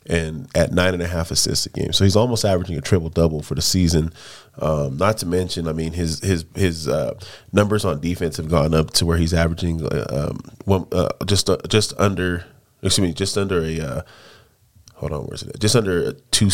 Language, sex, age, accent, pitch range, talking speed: English, male, 30-49, American, 85-100 Hz, 220 wpm